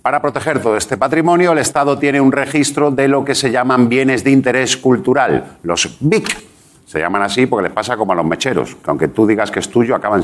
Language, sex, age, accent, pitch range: Japanese, male, 50-69, Spanish, 100-140 Hz